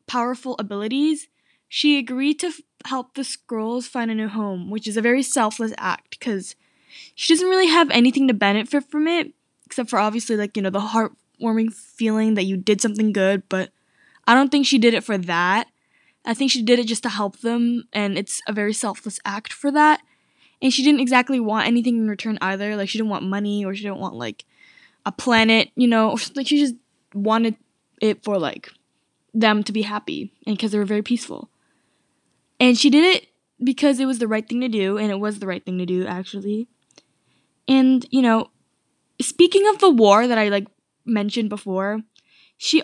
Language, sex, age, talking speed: English, female, 10-29, 200 wpm